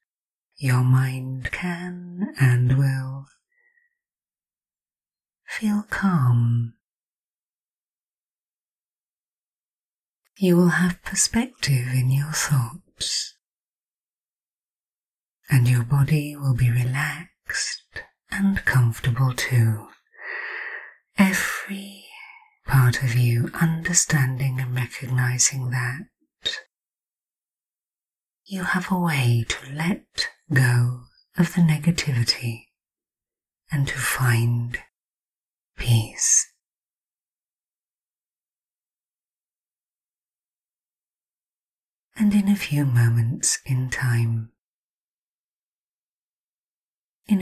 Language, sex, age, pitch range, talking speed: English, female, 30-49, 125-190 Hz, 65 wpm